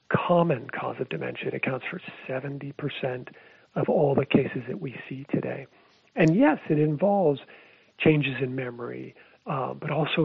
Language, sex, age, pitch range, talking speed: English, male, 40-59, 130-155 Hz, 150 wpm